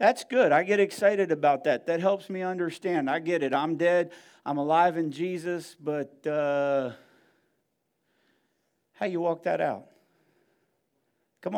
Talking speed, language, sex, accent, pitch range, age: 145 wpm, English, male, American, 165-225 Hz, 50-69